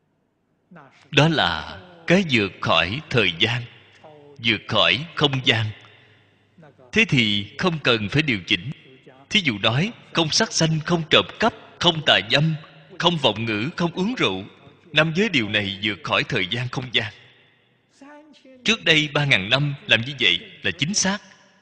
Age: 20-39